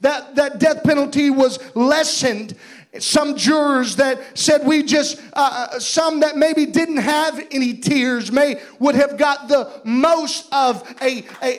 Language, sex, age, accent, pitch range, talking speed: English, male, 40-59, American, 255-295 Hz, 150 wpm